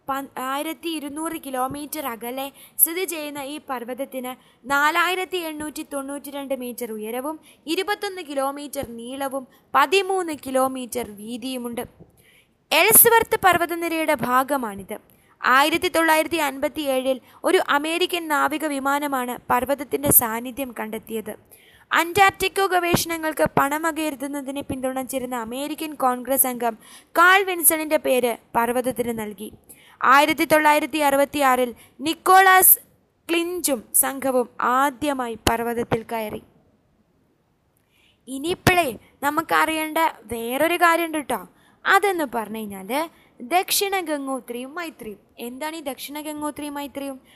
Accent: native